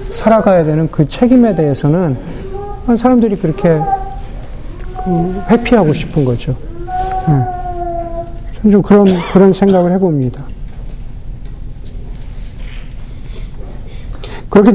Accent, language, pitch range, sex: native, Korean, 155-220 Hz, male